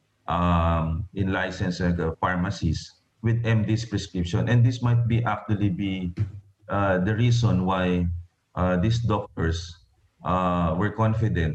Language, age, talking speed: English, 30-49, 125 wpm